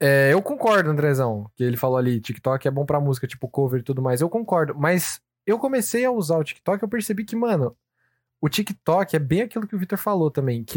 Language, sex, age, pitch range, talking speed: Portuguese, male, 10-29, 125-180 Hz, 240 wpm